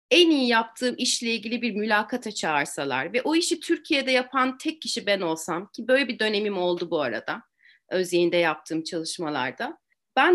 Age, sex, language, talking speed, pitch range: 30-49, female, Turkish, 160 wpm, 190-265 Hz